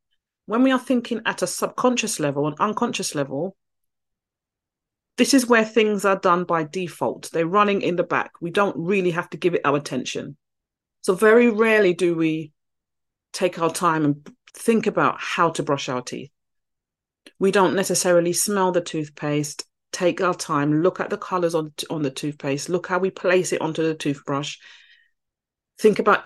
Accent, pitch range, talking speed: British, 155-205 Hz, 175 wpm